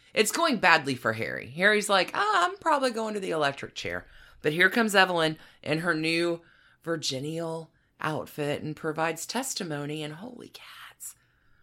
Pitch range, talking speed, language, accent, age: 145-205 Hz, 155 wpm, English, American, 30-49